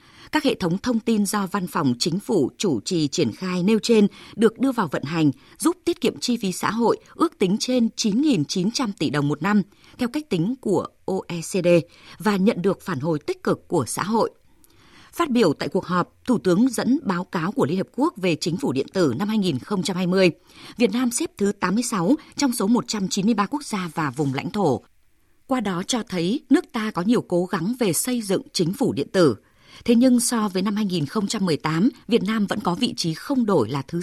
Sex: female